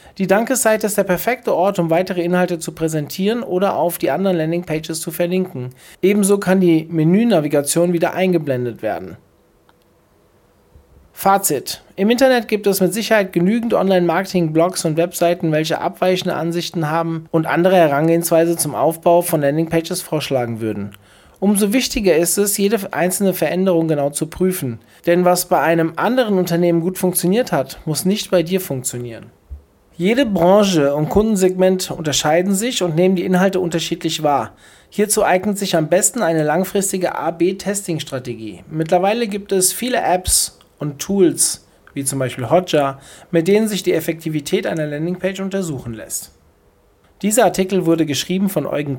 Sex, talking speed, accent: male, 150 wpm, German